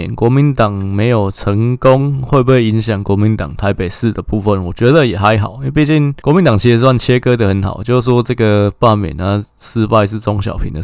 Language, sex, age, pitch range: Chinese, male, 20-39, 100-125 Hz